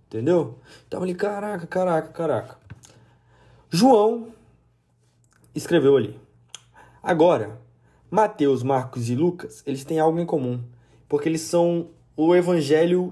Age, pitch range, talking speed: 20-39, 125-175 Hz, 110 wpm